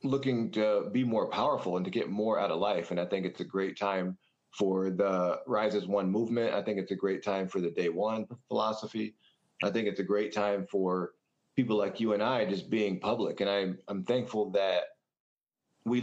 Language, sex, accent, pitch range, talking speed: English, male, American, 95-115 Hz, 210 wpm